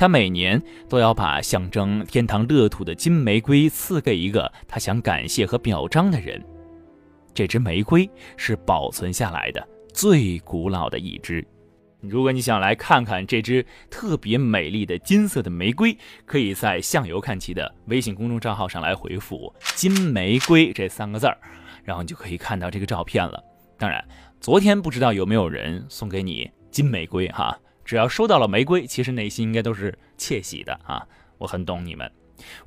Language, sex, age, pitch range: Chinese, male, 20-39, 90-130 Hz